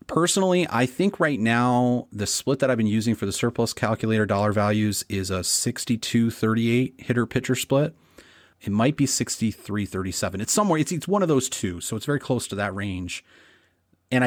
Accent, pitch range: American, 105-130 Hz